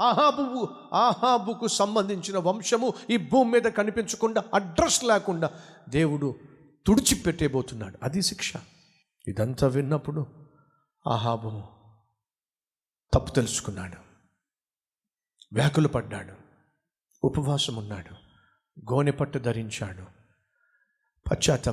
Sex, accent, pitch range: male, native, 120-185 Hz